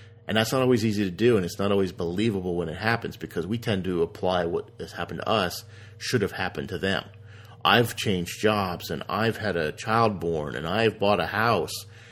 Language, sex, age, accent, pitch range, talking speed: English, male, 40-59, American, 95-115 Hz, 220 wpm